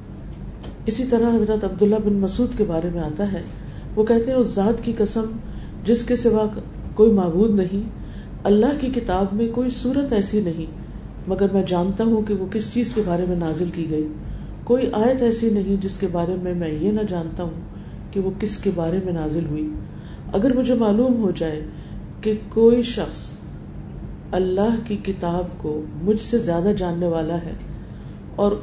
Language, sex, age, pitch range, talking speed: Urdu, female, 40-59, 170-220 Hz, 180 wpm